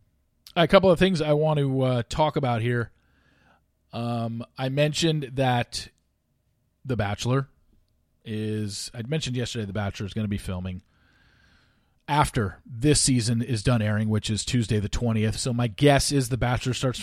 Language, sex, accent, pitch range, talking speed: English, male, American, 100-135 Hz, 160 wpm